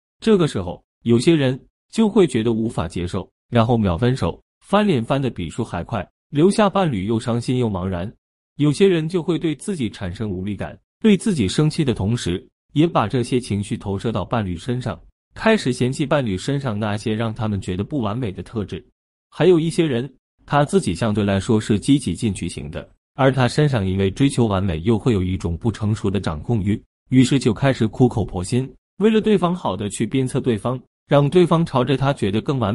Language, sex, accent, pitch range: Chinese, male, native, 100-150 Hz